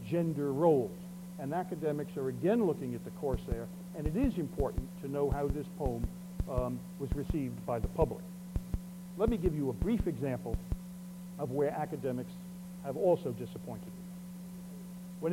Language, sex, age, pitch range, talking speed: English, male, 60-79, 140-180 Hz, 155 wpm